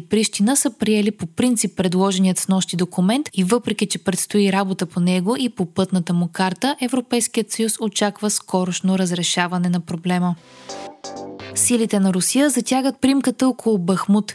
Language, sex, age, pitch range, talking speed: Bulgarian, female, 20-39, 190-235 Hz, 140 wpm